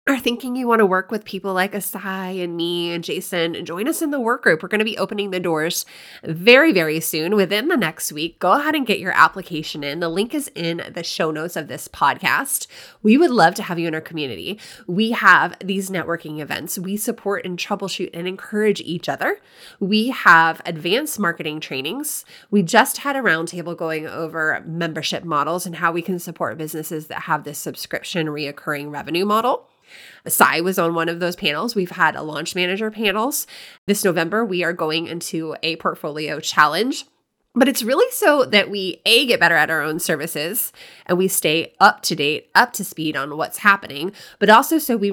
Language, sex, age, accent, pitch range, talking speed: English, female, 20-39, American, 165-215 Hz, 200 wpm